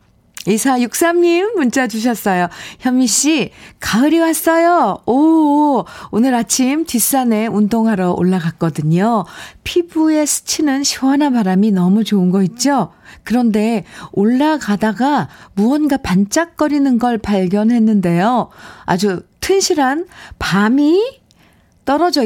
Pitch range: 180-260 Hz